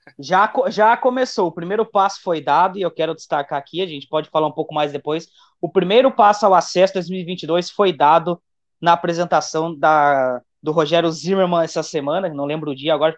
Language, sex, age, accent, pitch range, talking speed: Portuguese, male, 20-39, Brazilian, 155-200 Hz, 190 wpm